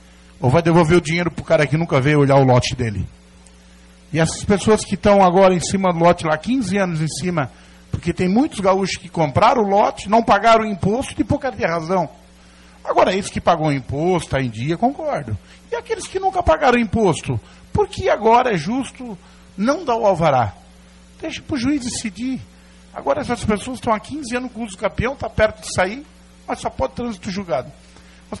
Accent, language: Brazilian, Portuguese